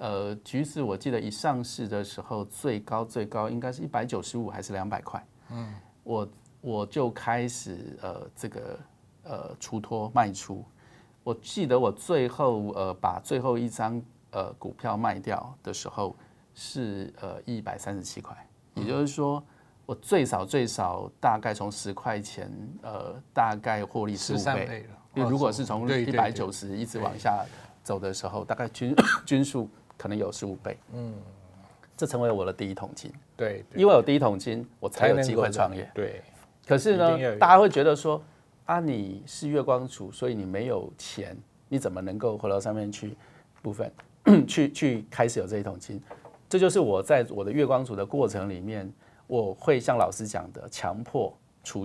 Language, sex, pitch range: Chinese, male, 100-125 Hz